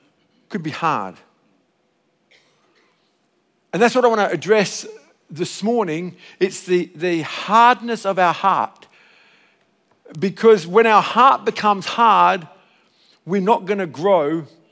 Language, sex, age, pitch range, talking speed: English, male, 50-69, 175-225 Hz, 120 wpm